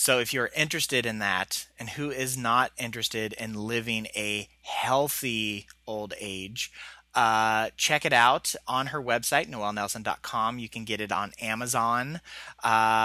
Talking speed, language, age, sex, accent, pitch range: 145 wpm, English, 30-49, male, American, 110-155 Hz